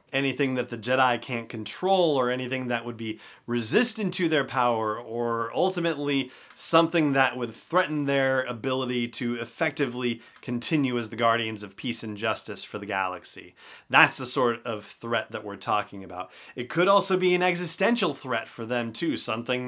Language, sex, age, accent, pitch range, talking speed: English, male, 30-49, American, 110-140 Hz, 170 wpm